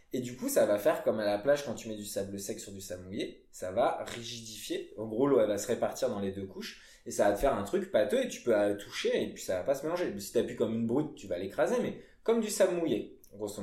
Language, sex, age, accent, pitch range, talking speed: French, male, 20-39, French, 100-140 Hz, 300 wpm